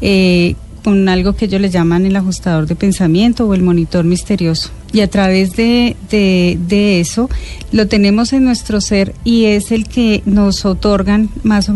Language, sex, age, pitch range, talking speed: English, female, 30-49, 185-220 Hz, 175 wpm